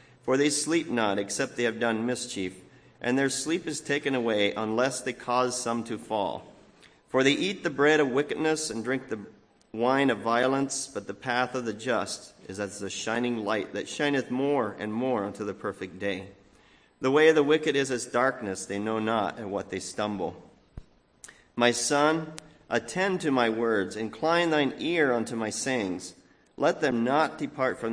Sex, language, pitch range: male, English, 110-140 Hz